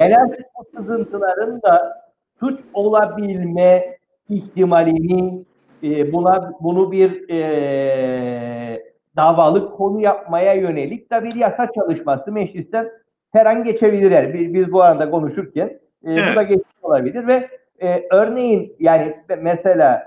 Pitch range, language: 170-230 Hz, Turkish